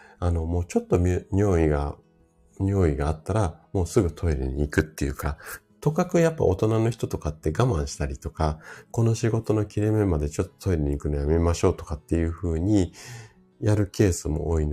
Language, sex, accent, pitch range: Japanese, male, native, 80-130 Hz